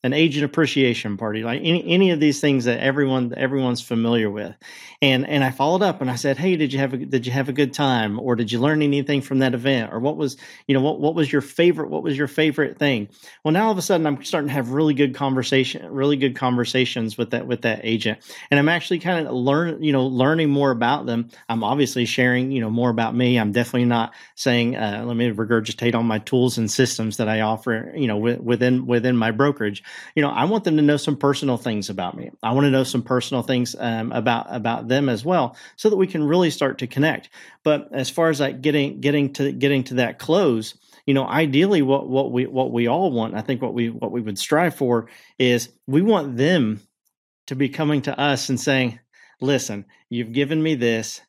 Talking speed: 235 wpm